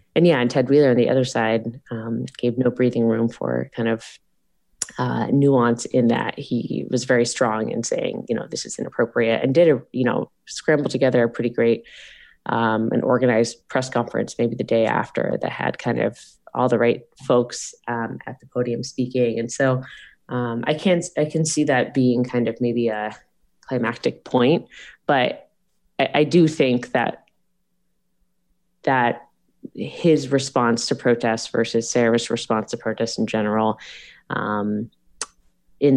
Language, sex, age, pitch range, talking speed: English, female, 20-39, 115-125 Hz, 170 wpm